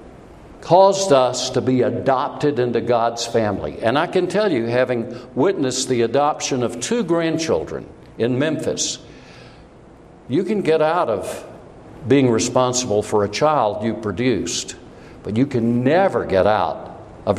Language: English